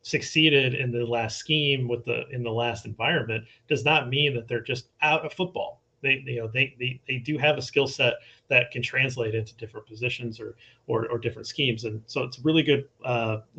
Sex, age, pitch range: male, 30-49, 120-155 Hz